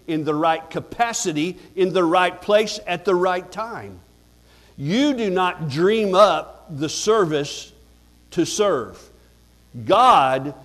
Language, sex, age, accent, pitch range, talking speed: English, male, 50-69, American, 140-190 Hz, 125 wpm